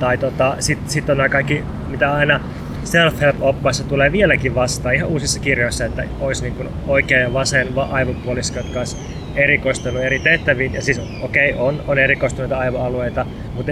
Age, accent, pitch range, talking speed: 20-39, native, 120-140 Hz, 165 wpm